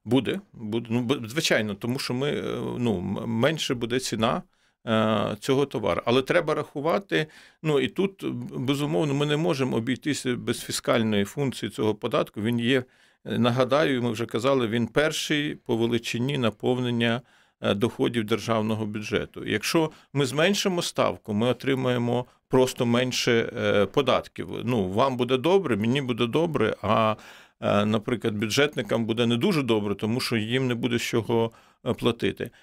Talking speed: 140 wpm